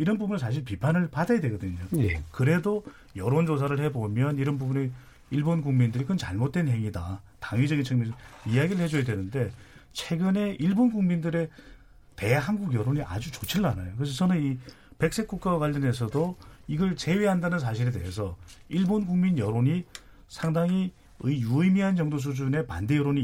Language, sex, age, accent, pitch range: Korean, male, 40-59, native, 120-160 Hz